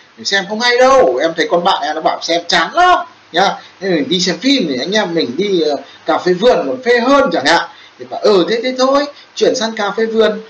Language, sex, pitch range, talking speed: Vietnamese, male, 180-255 Hz, 250 wpm